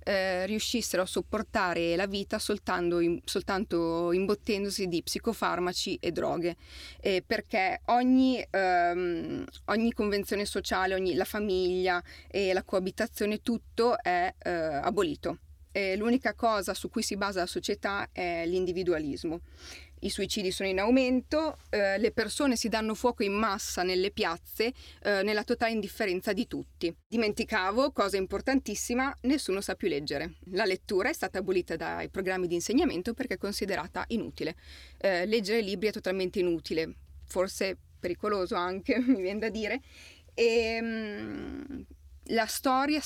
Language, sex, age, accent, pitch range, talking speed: Italian, female, 30-49, native, 185-225 Hz, 140 wpm